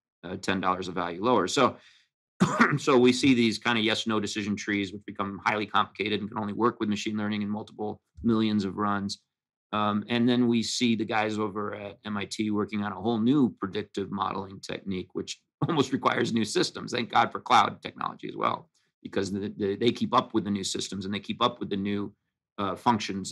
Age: 40-59